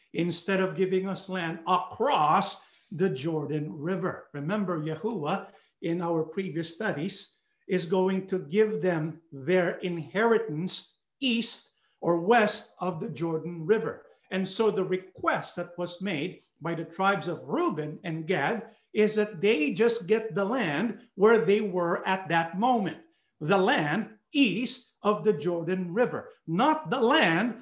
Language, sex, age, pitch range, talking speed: English, male, 50-69, 175-215 Hz, 145 wpm